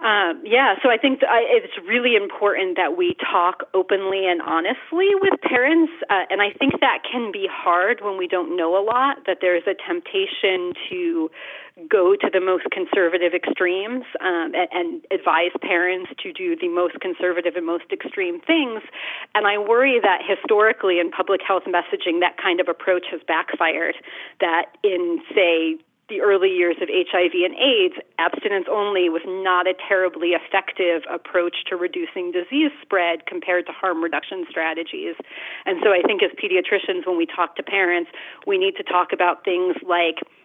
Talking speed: 170 wpm